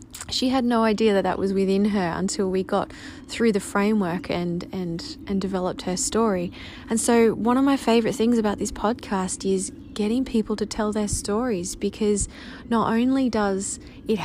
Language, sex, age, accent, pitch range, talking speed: English, female, 20-39, Australian, 190-225 Hz, 175 wpm